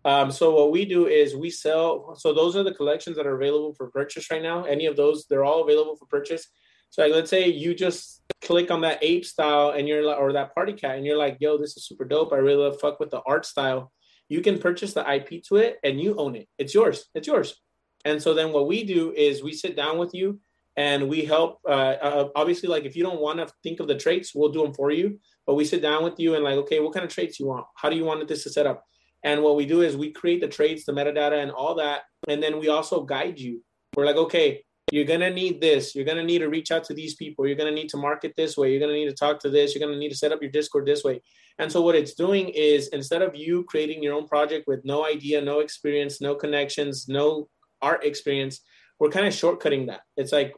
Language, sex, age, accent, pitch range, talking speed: English, male, 30-49, American, 145-170 Hz, 270 wpm